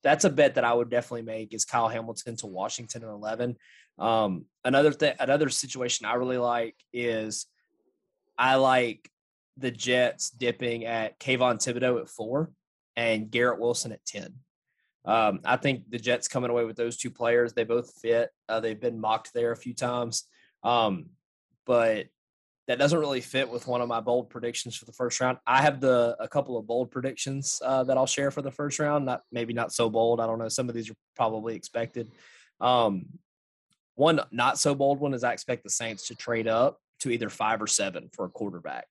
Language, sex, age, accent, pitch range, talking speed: English, male, 20-39, American, 115-125 Hz, 195 wpm